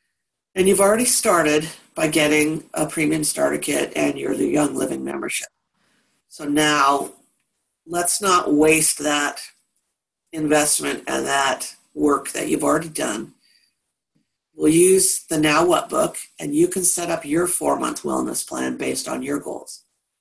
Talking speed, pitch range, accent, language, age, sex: 145 wpm, 150-180 Hz, American, English, 50-69, female